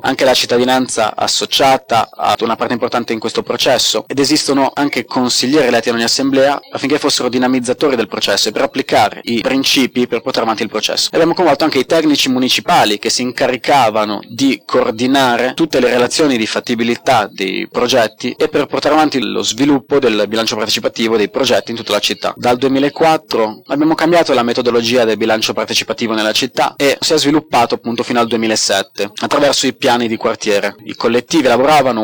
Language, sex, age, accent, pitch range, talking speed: Italian, male, 20-39, native, 115-140 Hz, 180 wpm